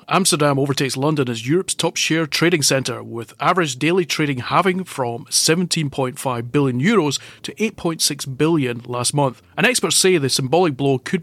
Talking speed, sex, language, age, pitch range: 150 wpm, male, English, 30-49, 125-165 Hz